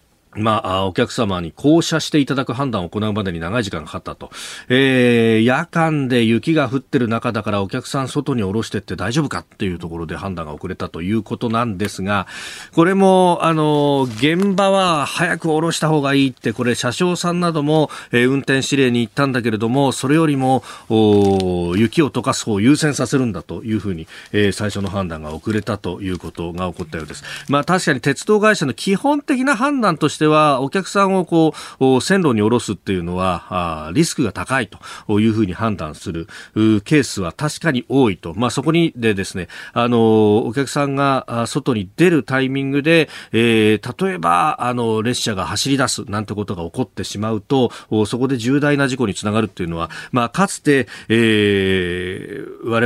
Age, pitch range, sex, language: 40-59, 100-140 Hz, male, Japanese